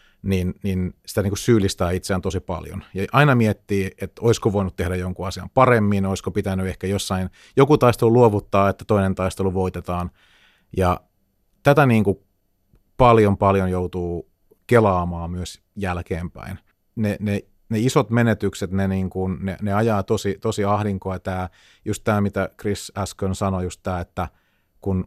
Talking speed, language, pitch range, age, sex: 145 wpm, Finnish, 90-105 Hz, 30-49, male